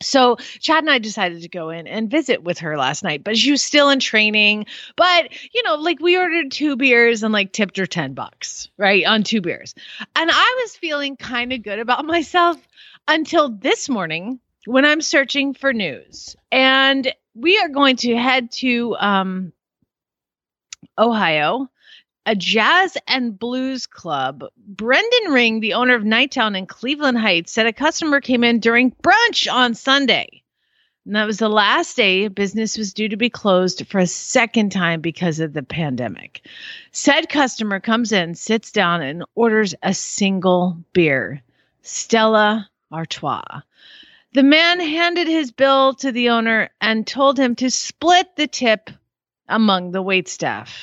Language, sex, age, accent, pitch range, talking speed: English, female, 30-49, American, 195-275 Hz, 165 wpm